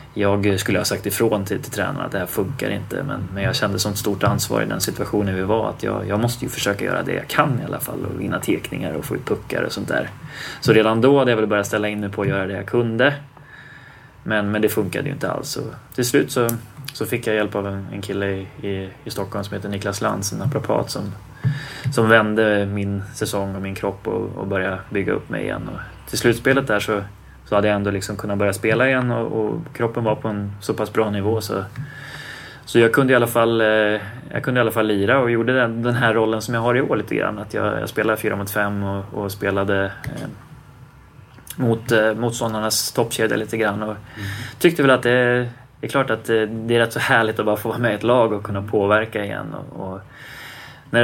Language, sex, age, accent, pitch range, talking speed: English, male, 20-39, Swedish, 100-120 Hz, 240 wpm